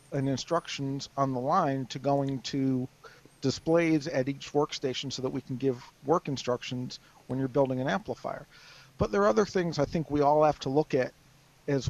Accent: American